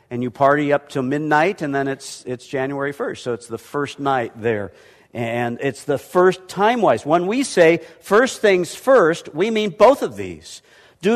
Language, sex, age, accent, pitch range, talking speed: English, male, 50-69, American, 125-165 Hz, 190 wpm